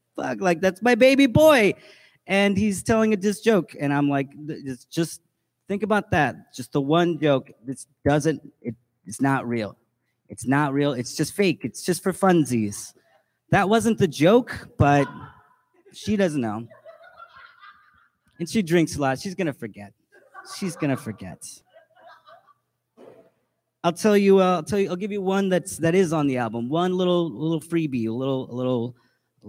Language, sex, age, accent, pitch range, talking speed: English, male, 30-49, American, 140-190 Hz, 175 wpm